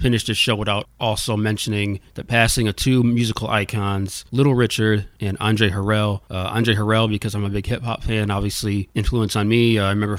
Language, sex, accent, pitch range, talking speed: English, male, American, 100-115 Hz, 200 wpm